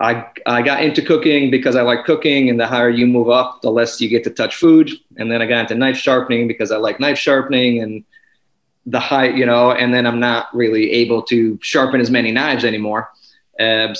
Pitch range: 110-130 Hz